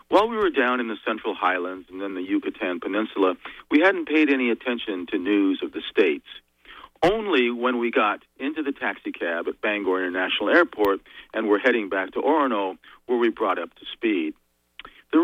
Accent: American